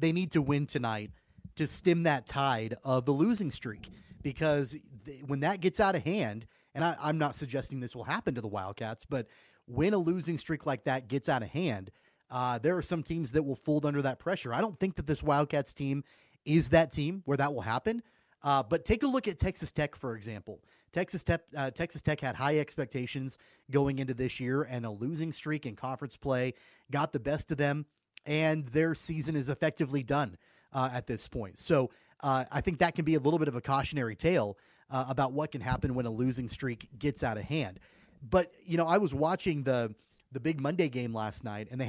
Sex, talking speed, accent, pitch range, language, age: male, 215 wpm, American, 125-155 Hz, English, 30-49